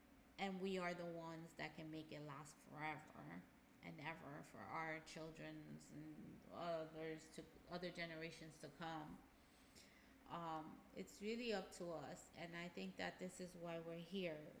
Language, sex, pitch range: English, female, 160-180 Hz